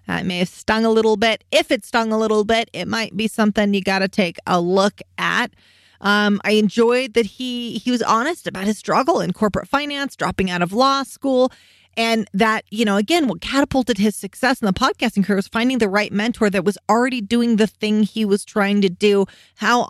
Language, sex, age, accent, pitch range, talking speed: English, female, 30-49, American, 195-255 Hz, 225 wpm